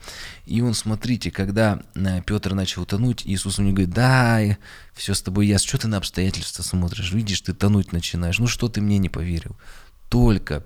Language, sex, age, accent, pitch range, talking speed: Russian, male, 20-39, native, 85-100 Hz, 180 wpm